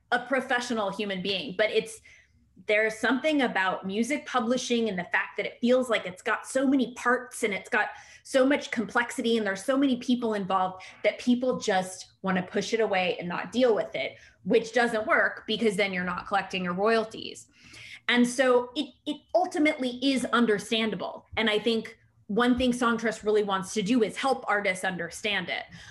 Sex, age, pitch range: female, 20-39, 195-250 Hz